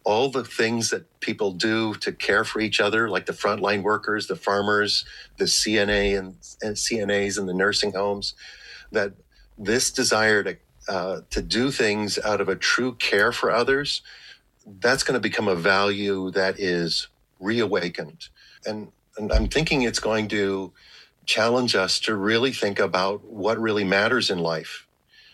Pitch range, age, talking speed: 95-110 Hz, 50-69, 160 wpm